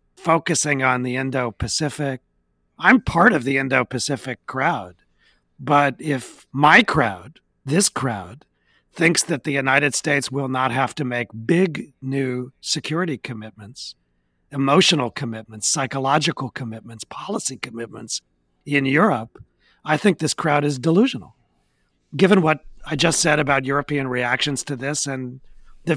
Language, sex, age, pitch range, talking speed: English, male, 40-59, 125-155 Hz, 135 wpm